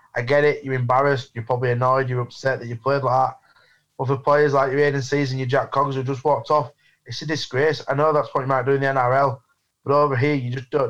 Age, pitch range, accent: 20-39, 125-140 Hz, British